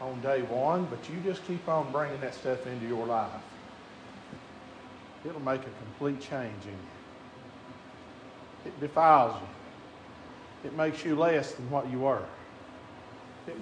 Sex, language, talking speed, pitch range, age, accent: male, English, 145 wpm, 180-235 Hz, 50-69, American